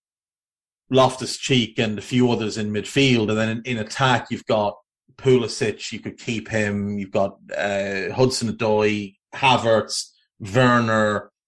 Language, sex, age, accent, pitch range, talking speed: English, male, 30-49, Irish, 105-130 Hz, 135 wpm